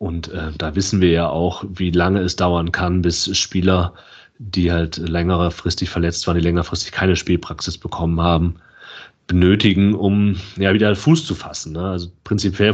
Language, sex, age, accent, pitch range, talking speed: German, male, 30-49, German, 90-115 Hz, 165 wpm